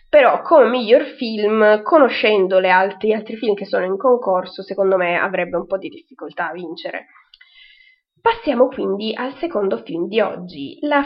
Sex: female